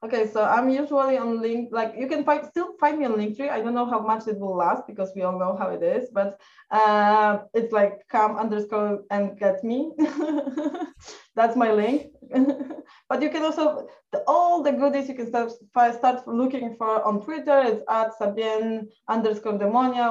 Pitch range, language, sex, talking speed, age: 210-265 Hz, English, female, 190 wpm, 20-39